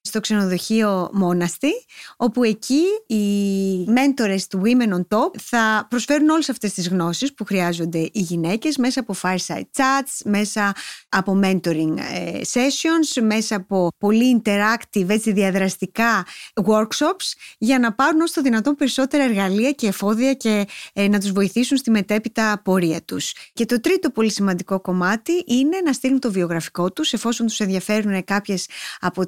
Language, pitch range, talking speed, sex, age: Greek, 185-250 Hz, 150 wpm, female, 20-39